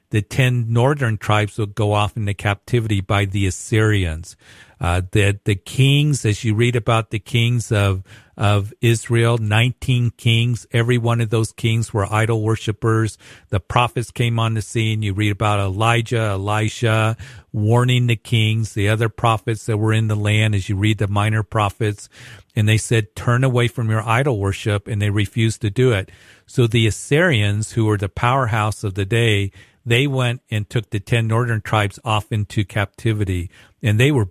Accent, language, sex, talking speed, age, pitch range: American, English, male, 180 wpm, 50-69, 105-120 Hz